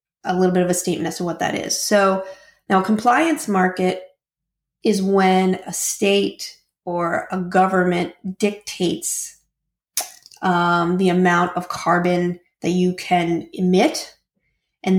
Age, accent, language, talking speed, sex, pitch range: 30-49, American, English, 135 wpm, female, 180-205 Hz